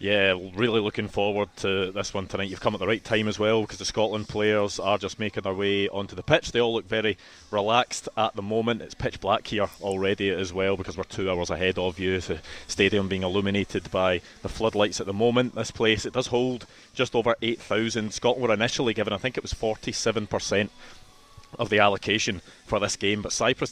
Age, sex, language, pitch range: 20-39, male, English, 100-110 Hz